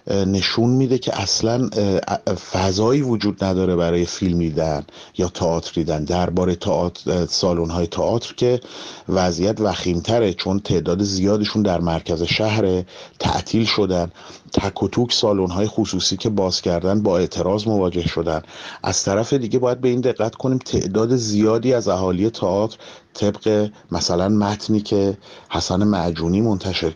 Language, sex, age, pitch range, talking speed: Persian, male, 40-59, 90-110 Hz, 130 wpm